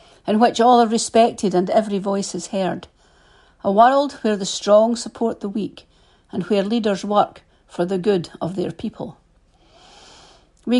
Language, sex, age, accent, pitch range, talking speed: English, female, 50-69, British, 195-230 Hz, 160 wpm